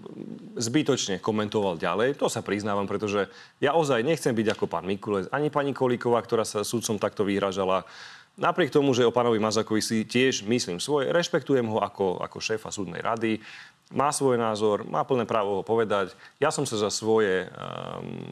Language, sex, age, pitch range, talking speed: Slovak, male, 30-49, 100-130 Hz, 175 wpm